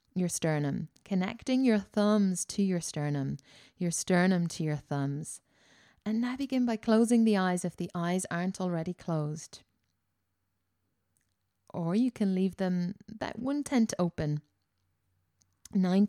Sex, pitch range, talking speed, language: female, 155-210 Hz, 135 wpm, English